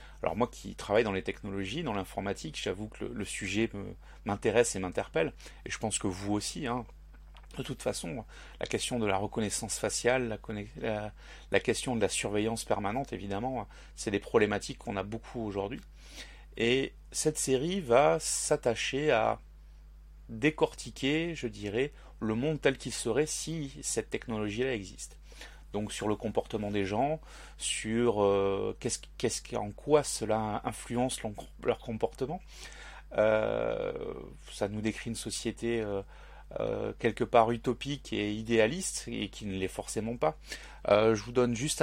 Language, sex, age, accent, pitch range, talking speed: French, male, 30-49, French, 100-120 Hz, 150 wpm